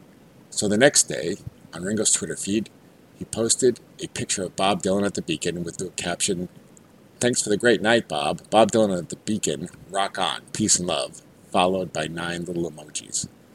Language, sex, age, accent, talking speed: English, male, 50-69, American, 185 wpm